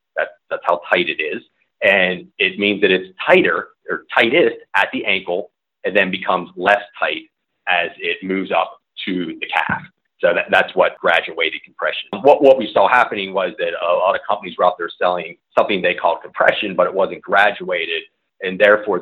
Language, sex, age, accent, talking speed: English, male, 40-59, American, 190 wpm